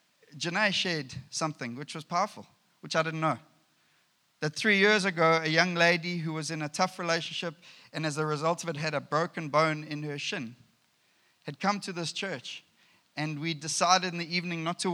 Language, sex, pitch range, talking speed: English, male, 150-200 Hz, 195 wpm